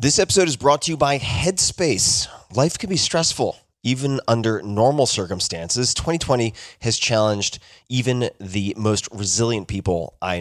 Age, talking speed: 30-49, 145 wpm